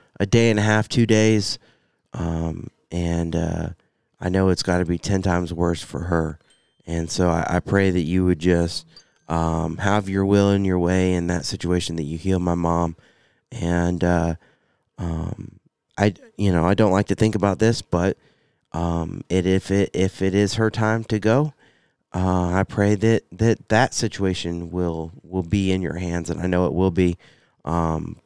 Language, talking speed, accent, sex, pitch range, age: English, 190 wpm, American, male, 85-100 Hz, 20-39